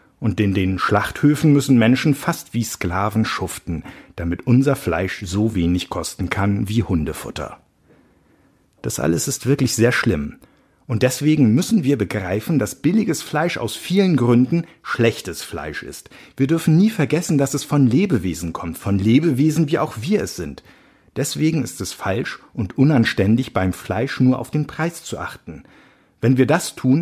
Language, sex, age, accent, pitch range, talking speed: German, male, 50-69, German, 100-145 Hz, 160 wpm